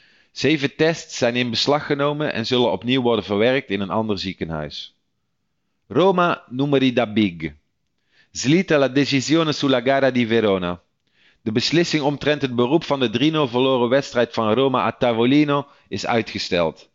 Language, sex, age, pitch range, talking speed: Dutch, male, 40-59, 115-140 Hz, 145 wpm